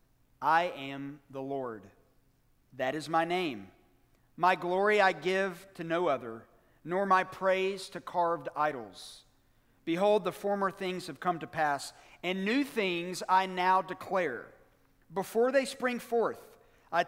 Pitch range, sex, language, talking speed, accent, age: 155-210 Hz, male, English, 140 wpm, American, 40-59